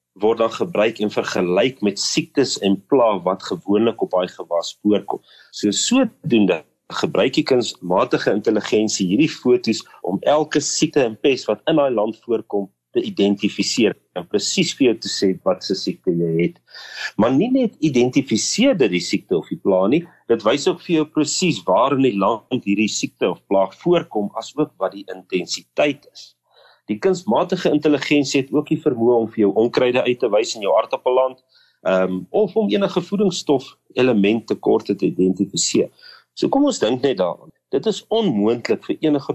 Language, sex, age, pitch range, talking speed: English, male, 40-59, 105-155 Hz, 175 wpm